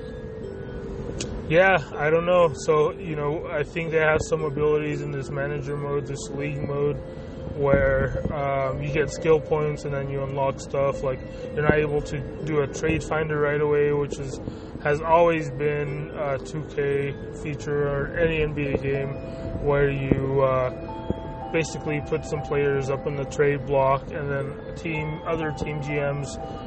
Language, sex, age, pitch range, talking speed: English, male, 20-39, 135-155 Hz, 165 wpm